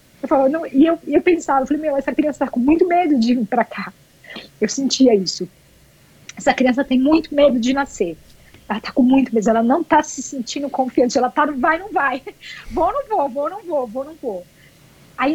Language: Portuguese